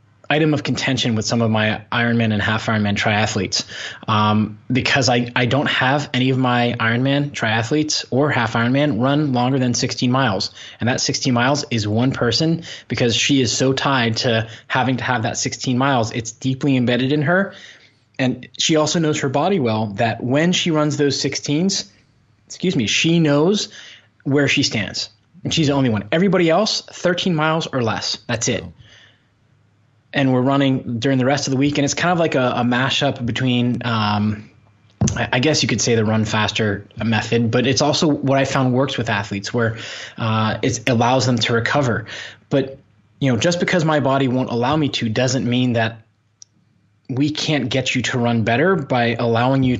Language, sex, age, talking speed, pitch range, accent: English, male, 20-39, 190 wpm, 115-140 Hz, American